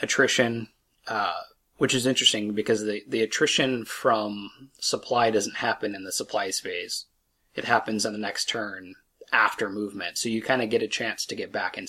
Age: 20-39